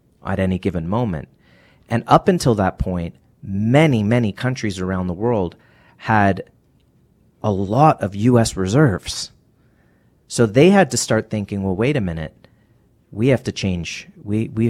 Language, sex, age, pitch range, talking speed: English, male, 30-49, 90-115 Hz, 150 wpm